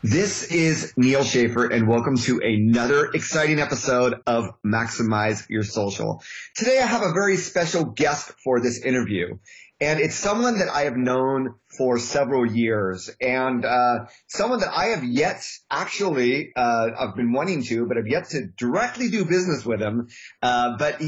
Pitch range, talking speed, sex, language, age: 115-145 Hz, 165 wpm, male, English, 30-49